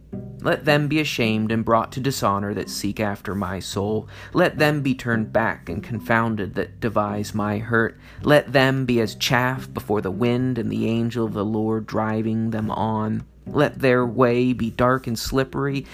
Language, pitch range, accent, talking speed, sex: English, 110-130 Hz, American, 180 wpm, male